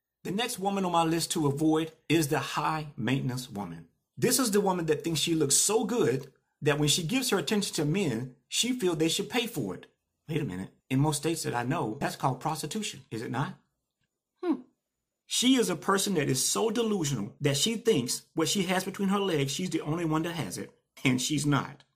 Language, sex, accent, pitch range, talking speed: English, male, American, 140-190 Hz, 220 wpm